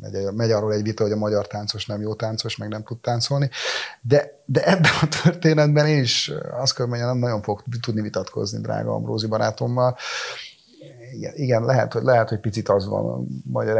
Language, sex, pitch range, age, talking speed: Hungarian, male, 105-125 Hz, 30-49, 180 wpm